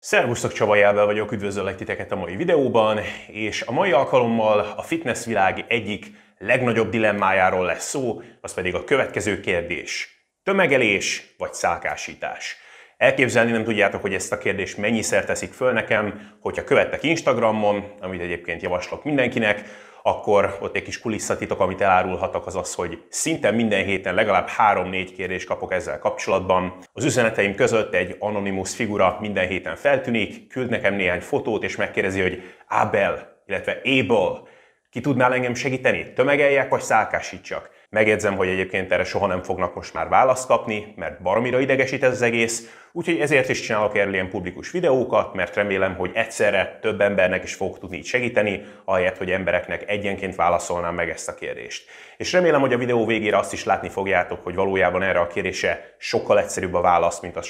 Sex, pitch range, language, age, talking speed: male, 95-120 Hz, Hungarian, 30-49, 160 wpm